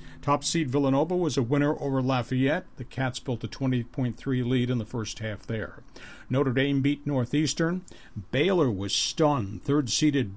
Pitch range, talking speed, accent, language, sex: 120-150 Hz, 160 wpm, American, English, male